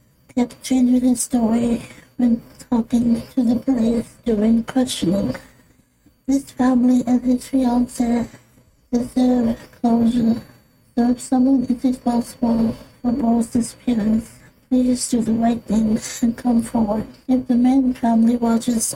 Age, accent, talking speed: 60-79, American, 125 wpm